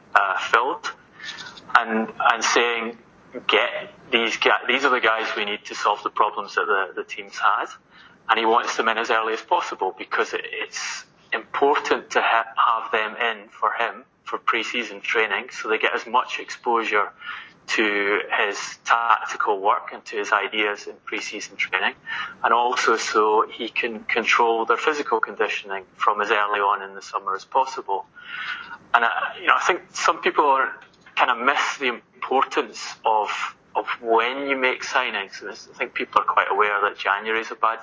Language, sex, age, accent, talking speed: English, male, 30-49, British, 180 wpm